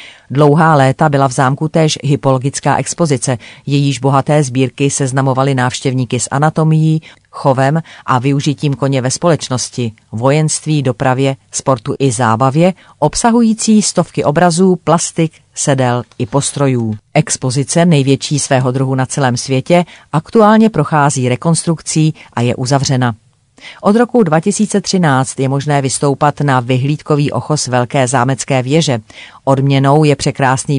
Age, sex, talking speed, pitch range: 40-59, female, 120 wpm, 130-155 Hz